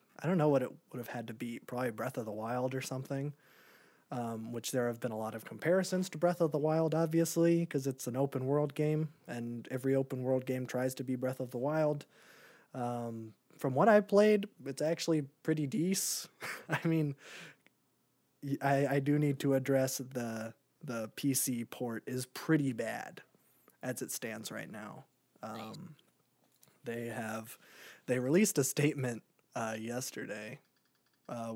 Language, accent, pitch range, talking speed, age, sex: English, American, 120-145 Hz, 170 wpm, 20-39, male